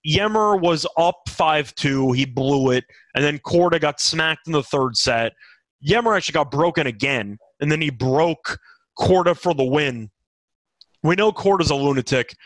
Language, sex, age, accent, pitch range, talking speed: English, male, 30-49, American, 135-185 Hz, 165 wpm